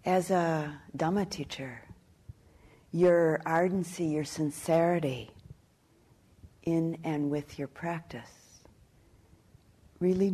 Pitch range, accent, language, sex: 115-170 Hz, American, English, female